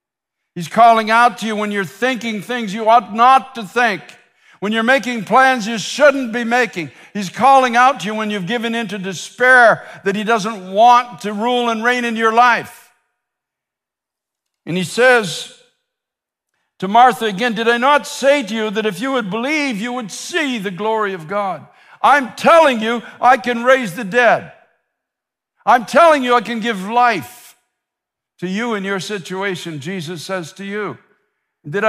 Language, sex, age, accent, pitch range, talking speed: English, male, 60-79, American, 190-240 Hz, 175 wpm